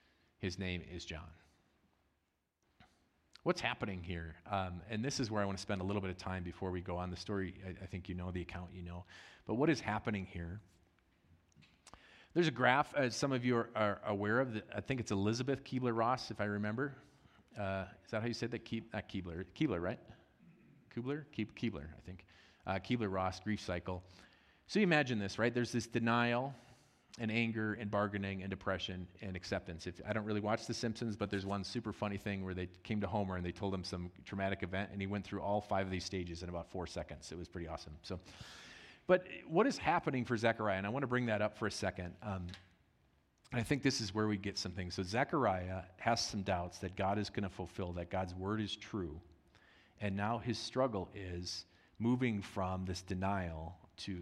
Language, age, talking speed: English, 40-59, 210 wpm